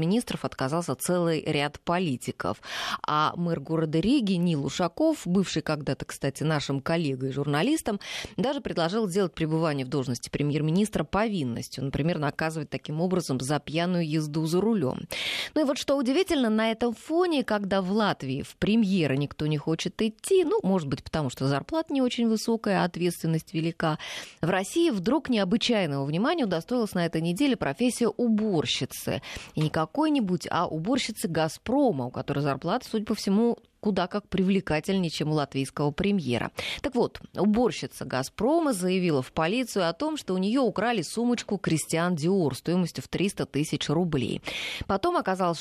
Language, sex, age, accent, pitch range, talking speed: Russian, female, 20-39, native, 155-220 Hz, 150 wpm